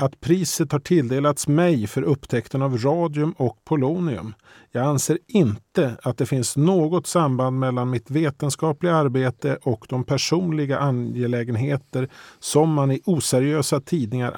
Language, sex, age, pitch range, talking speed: Swedish, male, 40-59, 120-155 Hz, 135 wpm